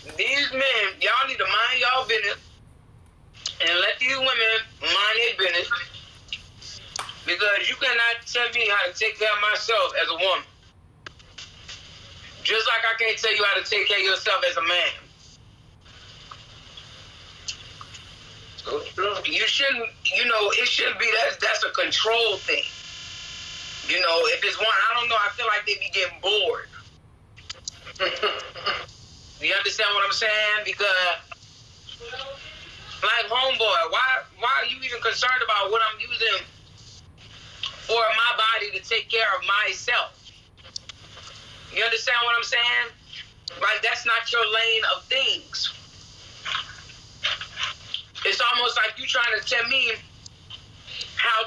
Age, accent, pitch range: 30-49, American, 175-240 Hz